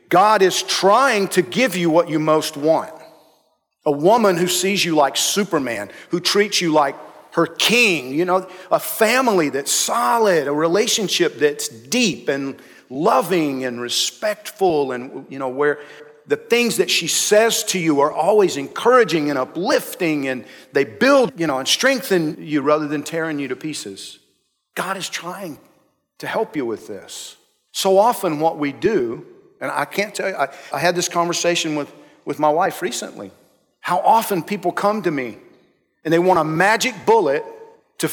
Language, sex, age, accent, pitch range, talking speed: English, male, 50-69, American, 150-225 Hz, 170 wpm